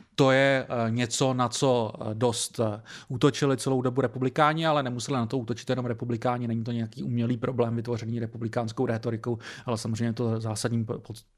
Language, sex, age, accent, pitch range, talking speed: Czech, male, 30-49, native, 115-125 Hz, 160 wpm